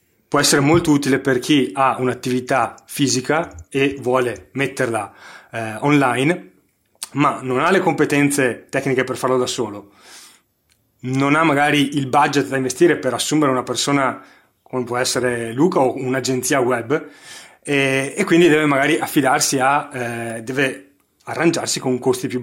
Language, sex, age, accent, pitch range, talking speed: Italian, male, 30-49, native, 125-150 Hz, 145 wpm